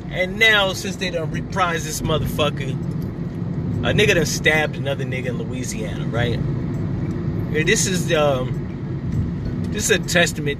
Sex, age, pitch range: male, 30-49, 125-160 Hz